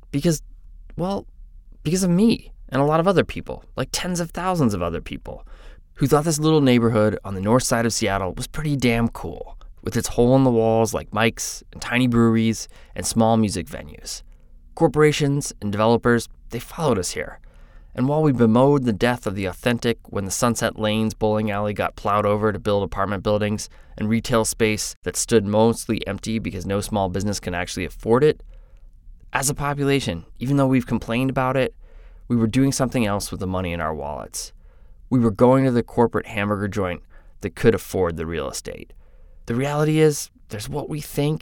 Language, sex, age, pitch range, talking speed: English, male, 20-39, 95-130 Hz, 195 wpm